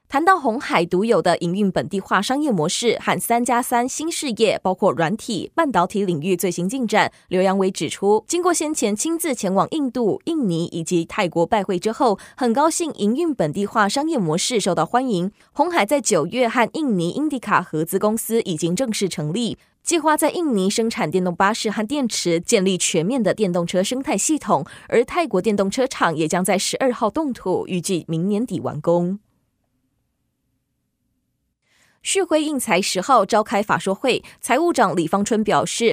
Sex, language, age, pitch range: female, Chinese, 20-39, 180-255 Hz